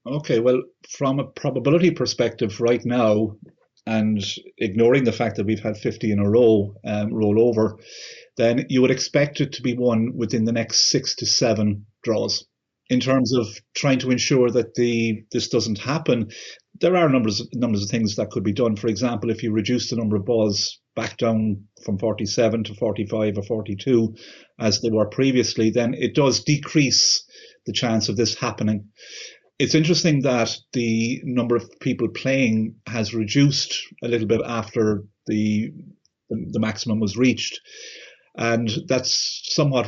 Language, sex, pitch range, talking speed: English, male, 110-125 Hz, 170 wpm